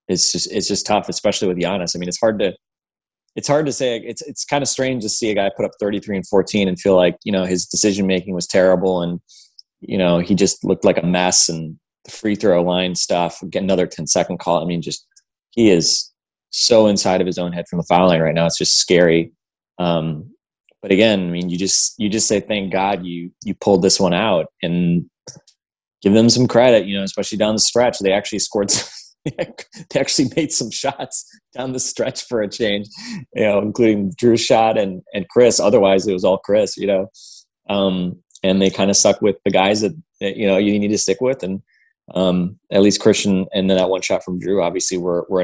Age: 20-39